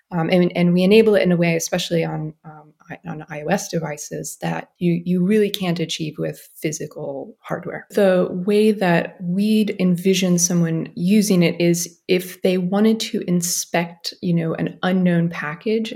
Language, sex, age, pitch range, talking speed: English, female, 20-39, 165-185 Hz, 160 wpm